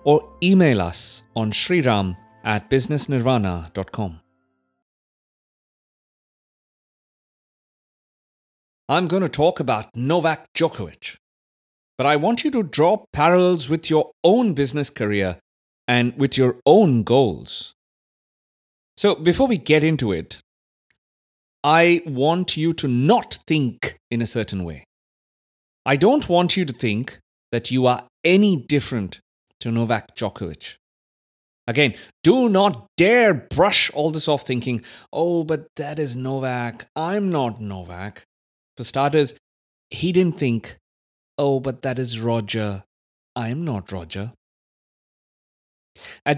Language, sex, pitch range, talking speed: English, male, 100-155 Hz, 120 wpm